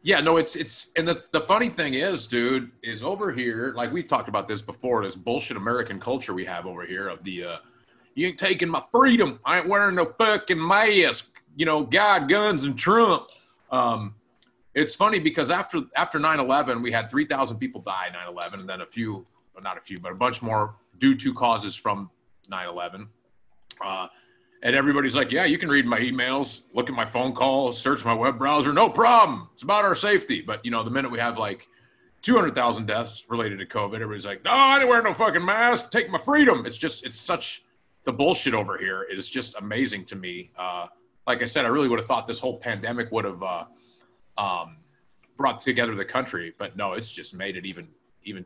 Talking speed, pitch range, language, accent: 215 wpm, 110-175 Hz, English, American